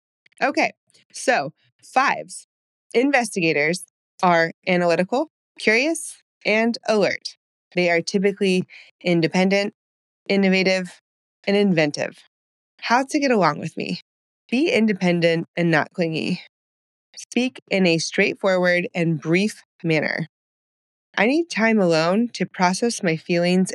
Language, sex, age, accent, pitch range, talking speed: English, female, 20-39, American, 175-230 Hz, 105 wpm